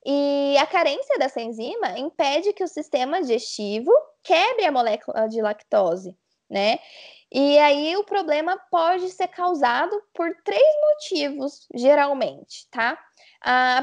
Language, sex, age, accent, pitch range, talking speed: Portuguese, female, 10-29, Brazilian, 235-305 Hz, 125 wpm